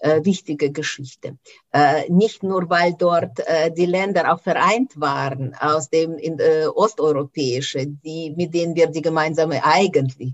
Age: 50-69